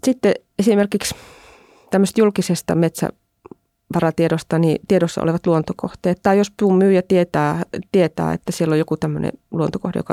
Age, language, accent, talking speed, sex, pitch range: 20-39, Finnish, native, 125 wpm, female, 155-195 Hz